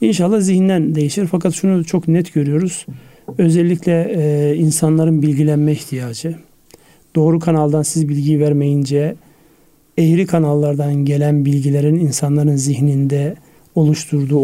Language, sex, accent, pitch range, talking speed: Turkish, male, native, 145-170 Hz, 105 wpm